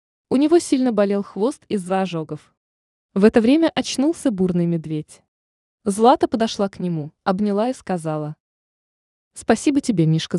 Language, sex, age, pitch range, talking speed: Russian, female, 20-39, 165-220 Hz, 135 wpm